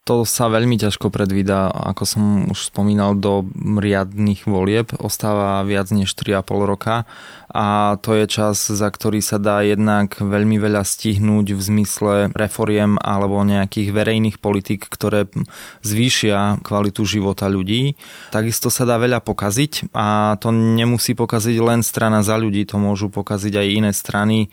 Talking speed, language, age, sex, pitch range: 145 wpm, Slovak, 20-39, male, 100-115 Hz